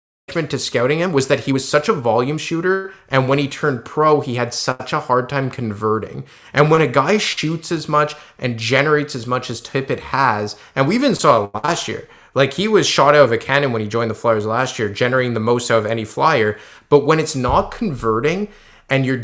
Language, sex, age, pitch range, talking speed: English, male, 20-39, 115-140 Hz, 225 wpm